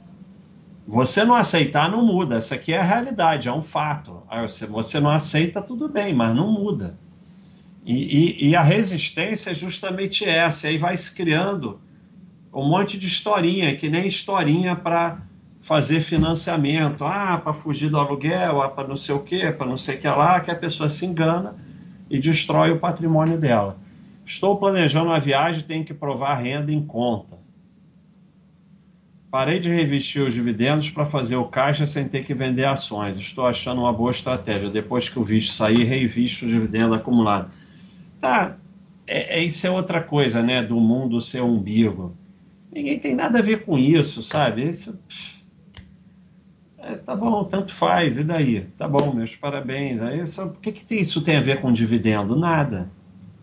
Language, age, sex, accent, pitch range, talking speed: Portuguese, 40-59, male, Brazilian, 130-185 Hz, 170 wpm